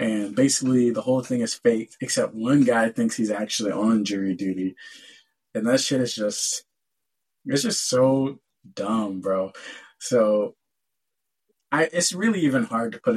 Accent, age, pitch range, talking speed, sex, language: American, 20-39, 105-130 Hz, 150 wpm, male, English